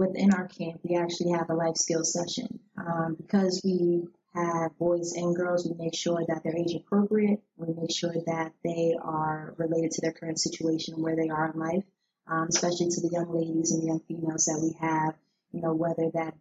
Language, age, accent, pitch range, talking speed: English, 20-39, American, 160-175 Hz, 210 wpm